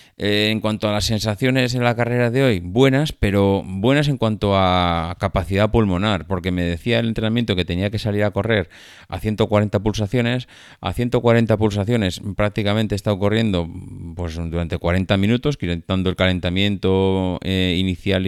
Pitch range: 90-110 Hz